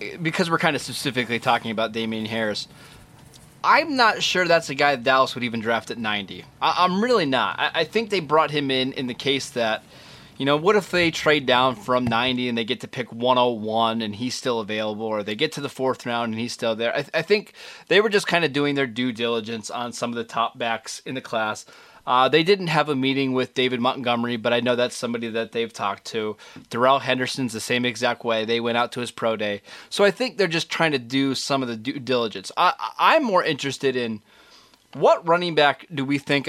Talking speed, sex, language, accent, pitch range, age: 235 wpm, male, English, American, 115-145 Hz, 20-39